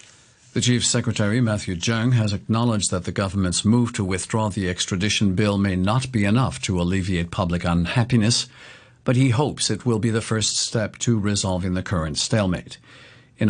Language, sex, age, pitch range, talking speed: English, male, 50-69, 95-120 Hz, 175 wpm